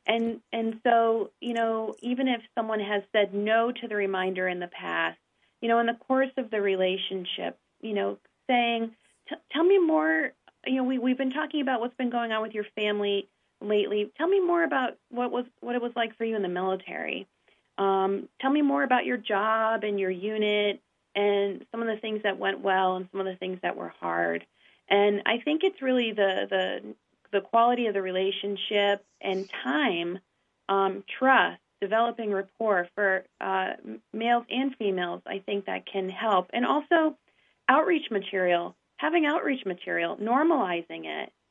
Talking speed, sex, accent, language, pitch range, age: 180 wpm, female, American, English, 195-245 Hz, 40-59